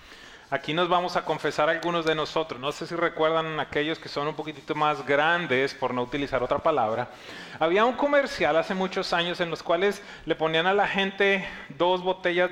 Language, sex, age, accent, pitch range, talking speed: English, male, 30-49, Mexican, 150-190 Hz, 190 wpm